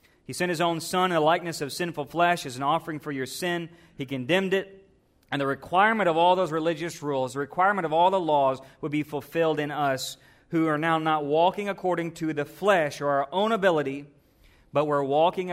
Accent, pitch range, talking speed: American, 140-175 Hz, 215 wpm